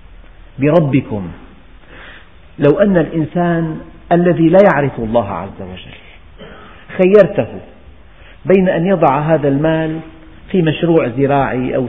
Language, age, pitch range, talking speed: Arabic, 50-69, 125-170 Hz, 100 wpm